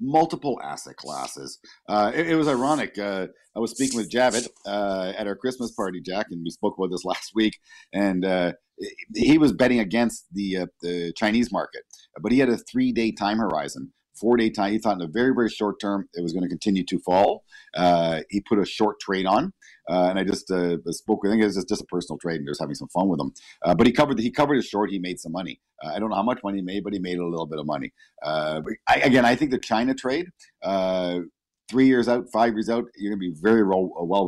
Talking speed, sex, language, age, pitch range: 250 wpm, male, English, 50-69, 90-115 Hz